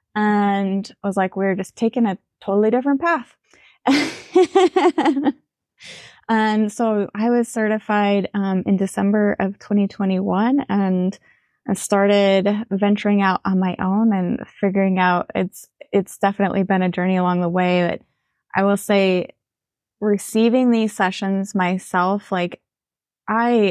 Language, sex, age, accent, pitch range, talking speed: English, female, 20-39, American, 185-215 Hz, 130 wpm